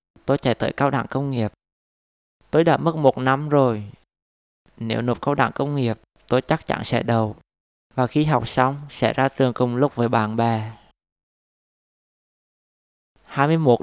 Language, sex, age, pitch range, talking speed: Vietnamese, male, 20-39, 115-140 Hz, 160 wpm